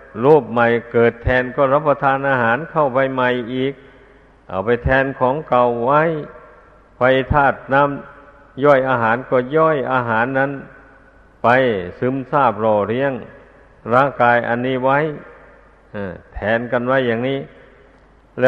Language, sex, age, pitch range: Thai, male, 60-79, 120-135 Hz